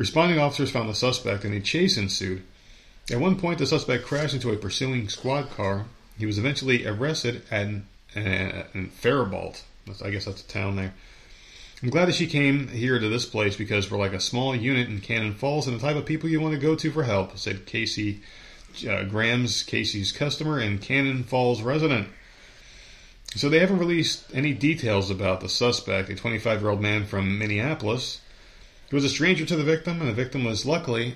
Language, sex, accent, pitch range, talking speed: English, male, American, 105-135 Hz, 190 wpm